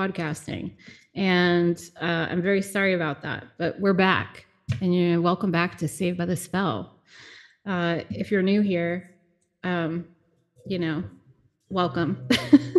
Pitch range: 170-205 Hz